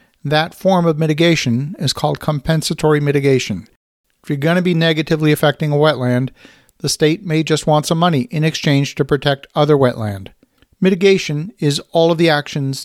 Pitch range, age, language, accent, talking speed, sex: 135-160 Hz, 50-69, English, American, 170 wpm, male